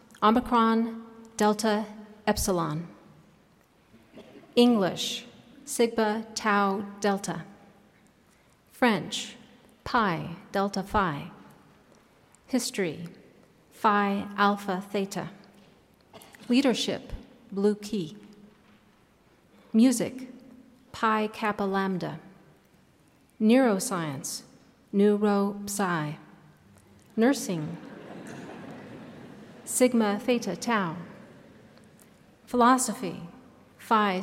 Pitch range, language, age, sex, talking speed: 190-230 Hz, English, 40-59, female, 55 wpm